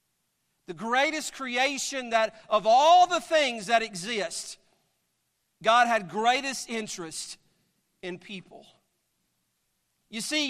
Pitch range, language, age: 180-240 Hz, English, 50-69